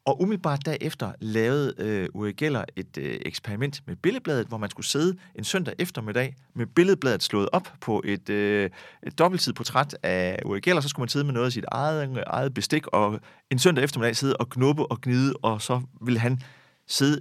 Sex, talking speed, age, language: male, 200 wpm, 30-49, Danish